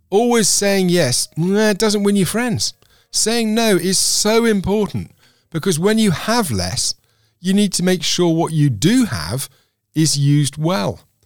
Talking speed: 155 wpm